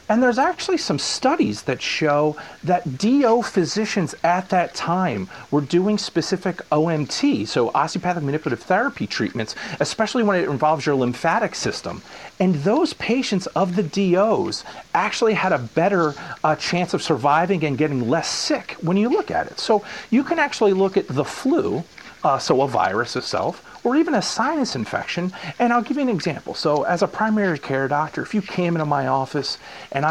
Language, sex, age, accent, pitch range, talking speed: English, male, 40-59, American, 145-205 Hz, 175 wpm